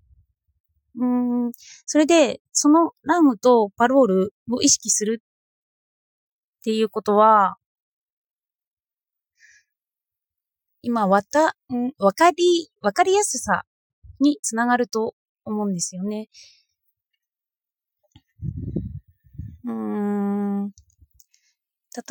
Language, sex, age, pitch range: Japanese, female, 20-39, 200-265 Hz